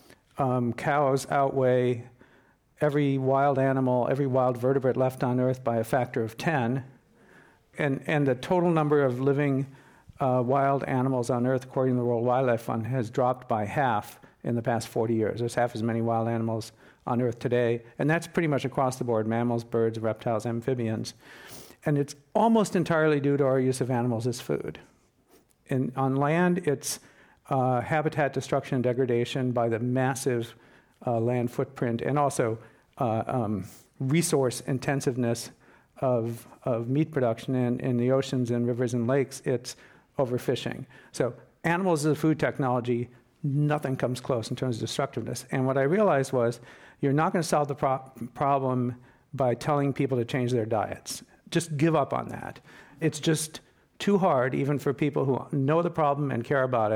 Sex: male